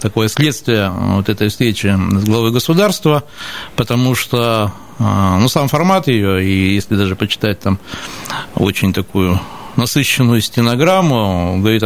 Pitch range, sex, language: 110-130 Hz, male, Russian